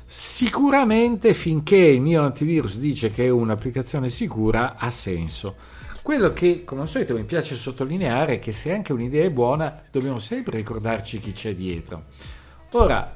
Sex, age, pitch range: male, 50-69, 110-155 Hz